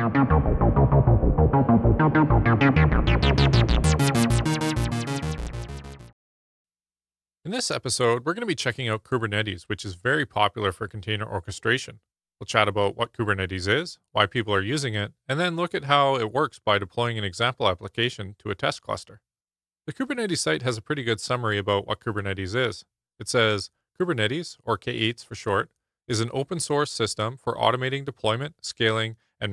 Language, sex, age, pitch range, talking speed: English, male, 30-49, 100-130 Hz, 145 wpm